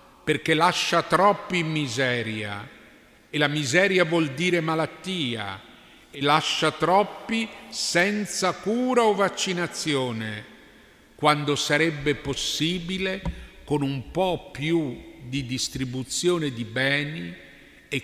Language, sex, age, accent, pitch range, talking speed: Italian, male, 50-69, native, 125-175 Hz, 100 wpm